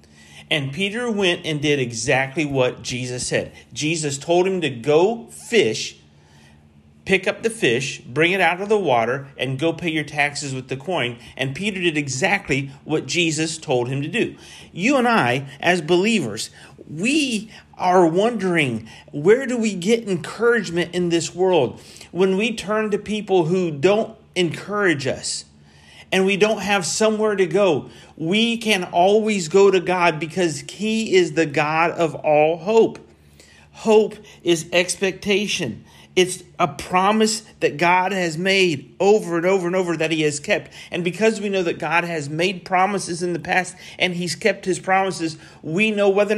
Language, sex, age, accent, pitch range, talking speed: English, male, 40-59, American, 150-195 Hz, 165 wpm